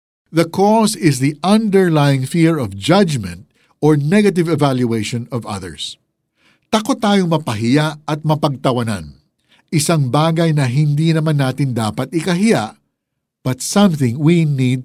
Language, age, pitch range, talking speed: Filipino, 50-69, 125-180 Hz, 120 wpm